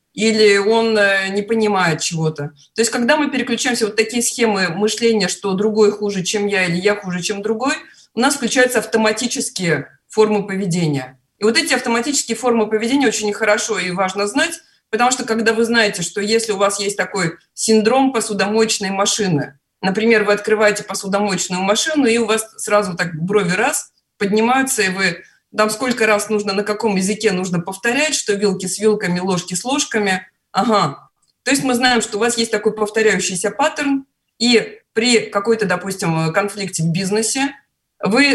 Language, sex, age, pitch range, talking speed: Russian, female, 20-39, 195-230 Hz, 165 wpm